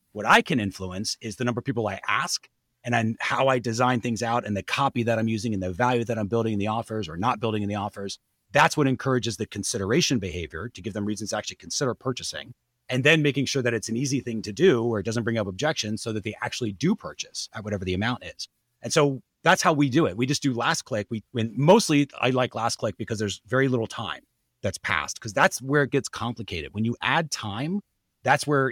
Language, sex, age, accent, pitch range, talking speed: English, male, 30-49, American, 110-145 Hz, 245 wpm